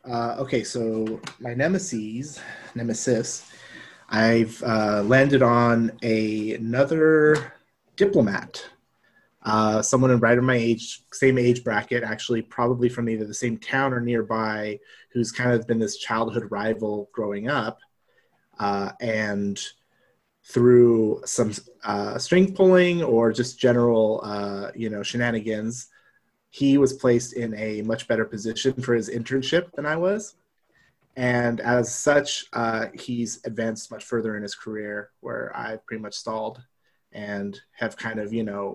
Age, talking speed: 30-49, 140 wpm